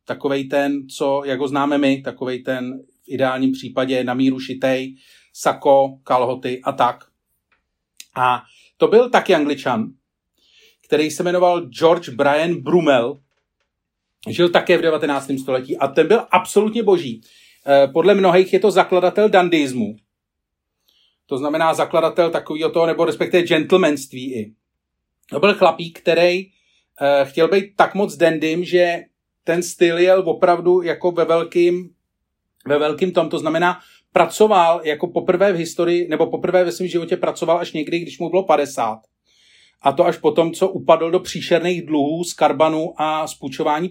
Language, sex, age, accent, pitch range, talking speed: Czech, male, 40-59, native, 140-180 Hz, 145 wpm